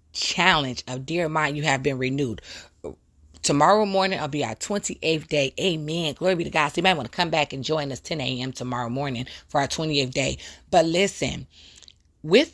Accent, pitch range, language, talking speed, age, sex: American, 135-185 Hz, English, 195 wpm, 30-49, female